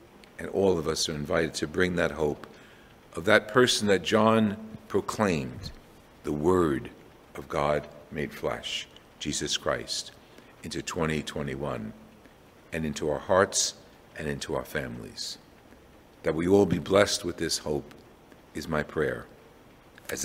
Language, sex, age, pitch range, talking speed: English, male, 50-69, 75-105 Hz, 135 wpm